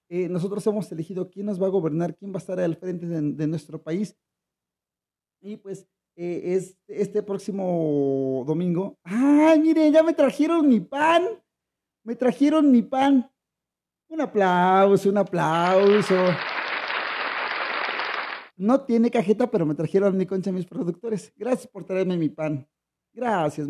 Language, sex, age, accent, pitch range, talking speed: Spanish, male, 40-59, Mexican, 165-225 Hz, 145 wpm